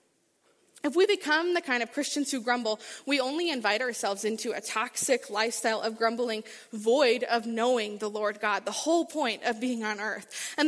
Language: English